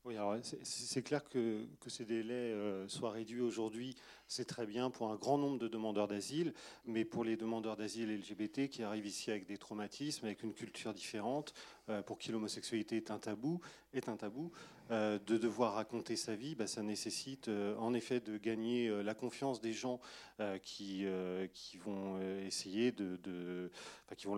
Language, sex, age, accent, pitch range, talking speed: French, male, 40-59, French, 100-120 Hz, 190 wpm